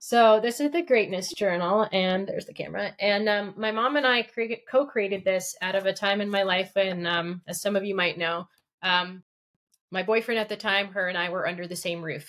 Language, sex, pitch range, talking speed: English, female, 175-205 Hz, 235 wpm